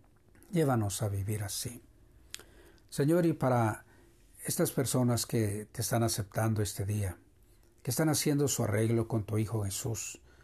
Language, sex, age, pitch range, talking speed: Spanish, male, 60-79, 105-125 Hz, 140 wpm